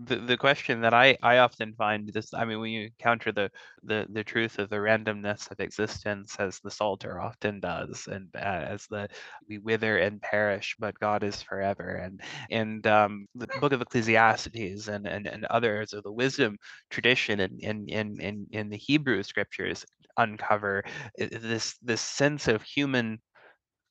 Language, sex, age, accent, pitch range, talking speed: English, male, 20-39, American, 105-120 Hz, 175 wpm